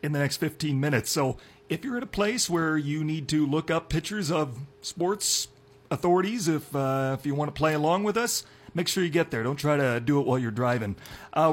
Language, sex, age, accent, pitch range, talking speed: English, male, 40-59, American, 130-165 Hz, 235 wpm